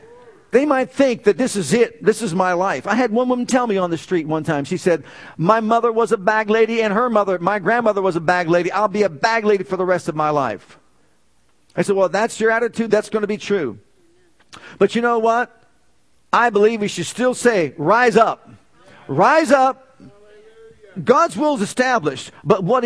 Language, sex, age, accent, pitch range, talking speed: English, male, 50-69, American, 195-245 Hz, 215 wpm